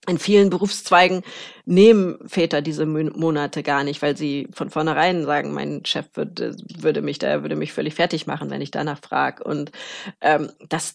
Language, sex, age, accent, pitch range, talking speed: German, female, 30-49, German, 165-210 Hz, 175 wpm